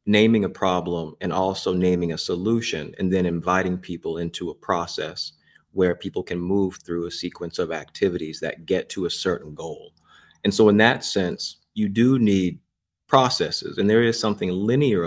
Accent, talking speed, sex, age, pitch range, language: American, 175 wpm, male, 30-49, 85-105 Hz, English